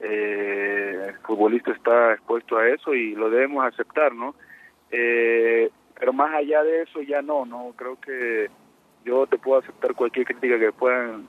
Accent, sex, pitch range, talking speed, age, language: Mexican, male, 120-150 Hz, 165 wpm, 30-49, Spanish